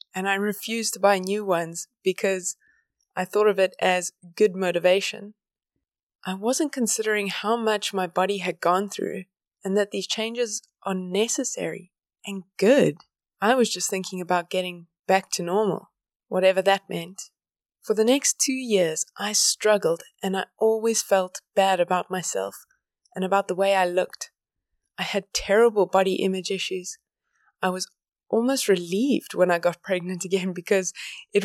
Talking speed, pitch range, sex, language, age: 155 wpm, 185-220 Hz, female, English, 20-39